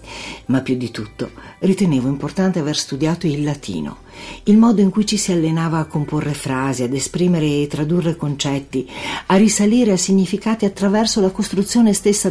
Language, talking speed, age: Italian, 160 wpm, 50-69